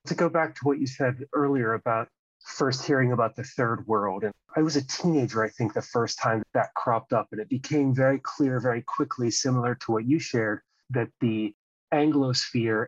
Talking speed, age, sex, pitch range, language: 205 wpm, 30-49, male, 110-130 Hz, English